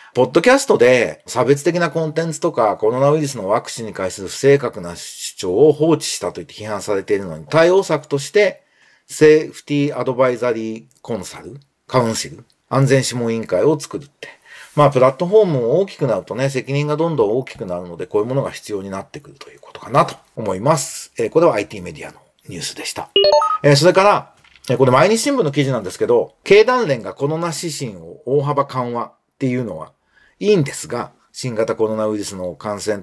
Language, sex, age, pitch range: Japanese, male, 40-59, 120-170 Hz